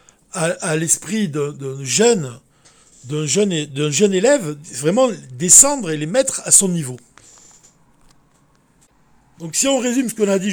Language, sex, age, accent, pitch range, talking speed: French, male, 60-79, French, 155-215 Hz, 140 wpm